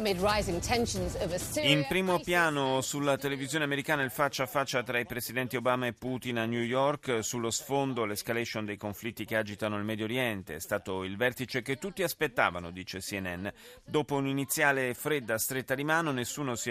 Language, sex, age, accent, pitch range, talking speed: Italian, male, 30-49, native, 105-135 Hz, 165 wpm